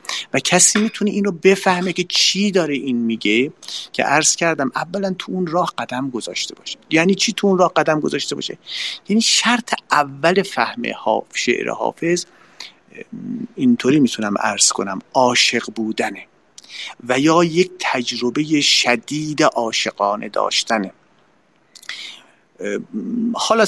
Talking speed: 120 wpm